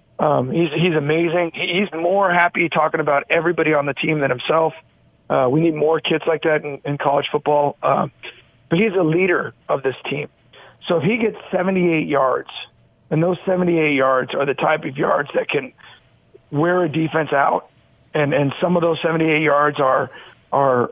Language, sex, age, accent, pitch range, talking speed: English, male, 40-59, American, 145-175 Hz, 185 wpm